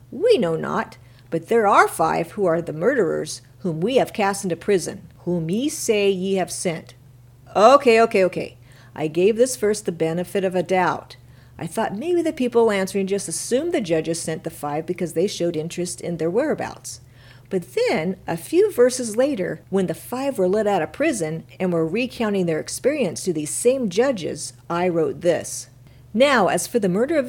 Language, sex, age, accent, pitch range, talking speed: English, female, 50-69, American, 160-235 Hz, 190 wpm